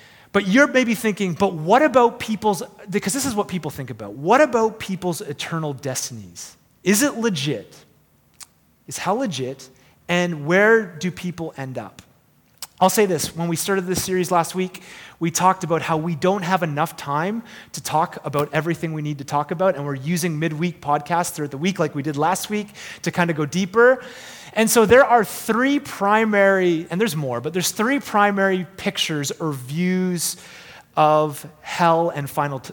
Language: English